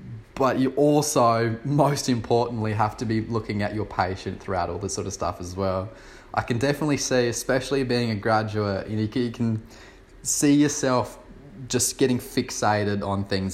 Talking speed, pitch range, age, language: 170 wpm, 95-120 Hz, 20-39, English